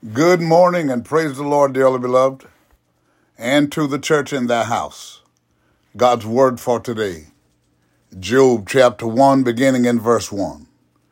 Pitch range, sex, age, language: 115-145 Hz, male, 50-69, English